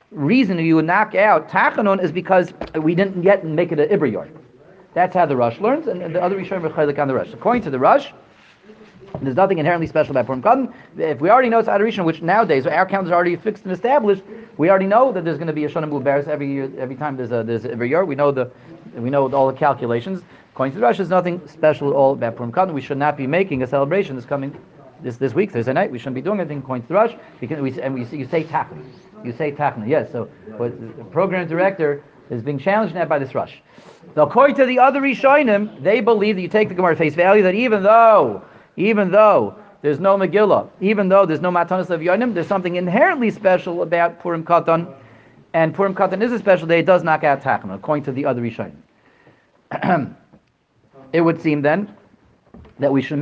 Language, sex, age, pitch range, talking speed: English, male, 40-59, 140-195 Hz, 220 wpm